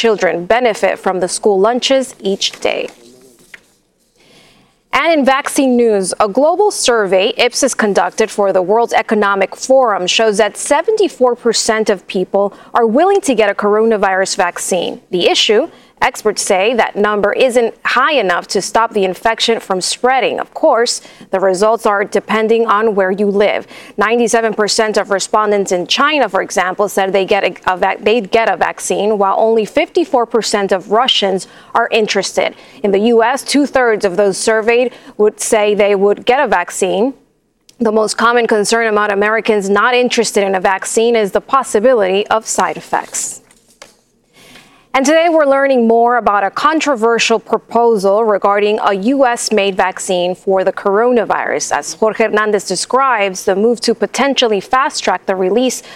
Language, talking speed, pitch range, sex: English, 155 wpm, 200-240 Hz, female